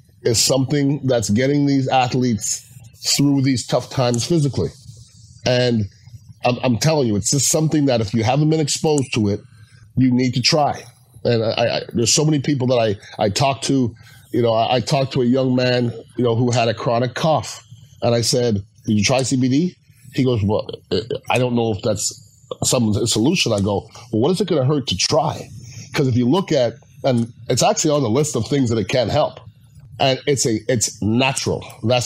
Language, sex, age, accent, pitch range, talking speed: English, male, 30-49, American, 115-140 Hz, 205 wpm